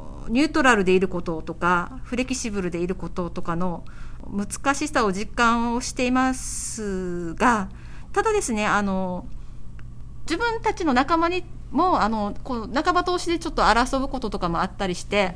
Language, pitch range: Japanese, 195-285 Hz